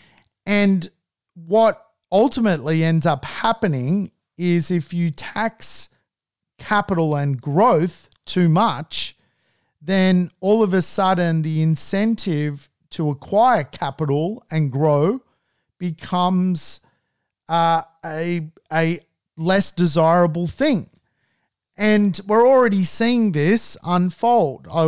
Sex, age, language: male, 40-59, English